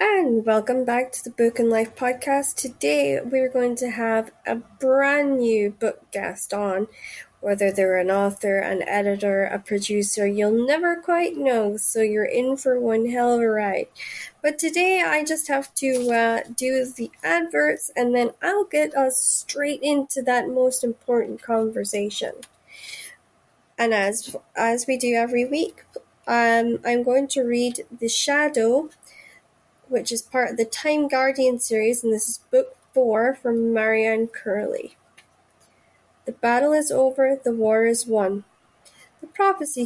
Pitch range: 225-275 Hz